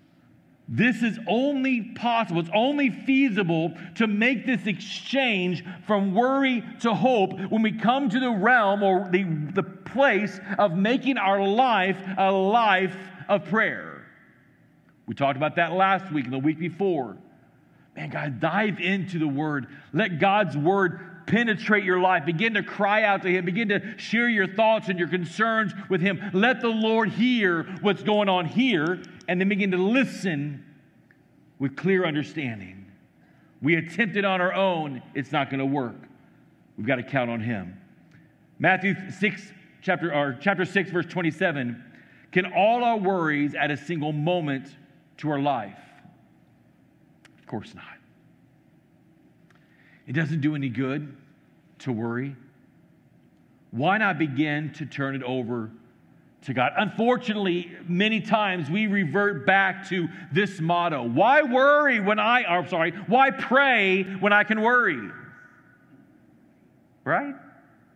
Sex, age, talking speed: male, 50-69, 145 wpm